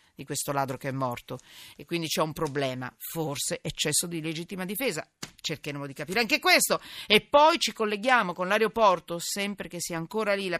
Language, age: Italian, 40-59